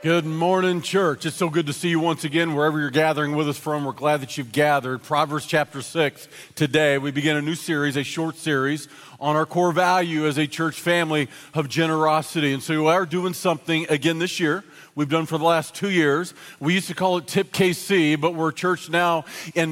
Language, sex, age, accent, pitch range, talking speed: English, male, 40-59, American, 150-185 Hz, 220 wpm